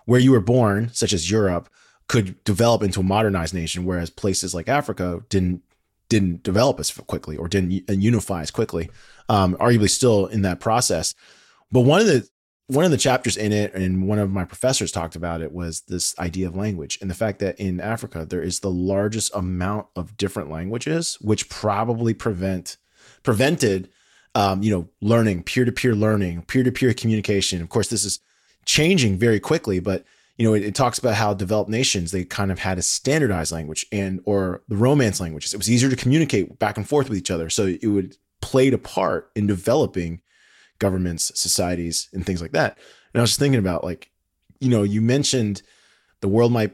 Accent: American